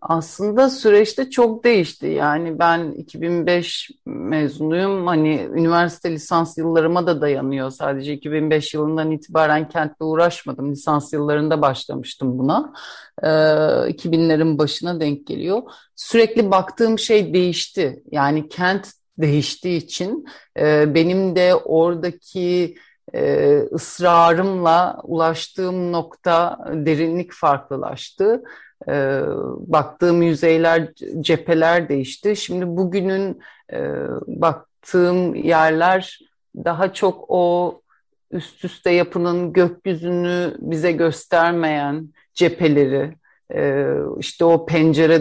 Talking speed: 85 wpm